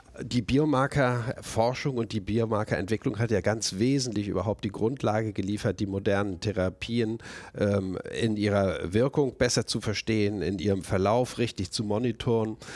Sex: male